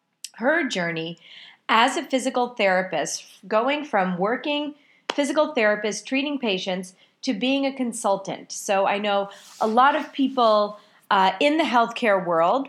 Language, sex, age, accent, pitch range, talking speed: English, female, 30-49, American, 200-265 Hz, 135 wpm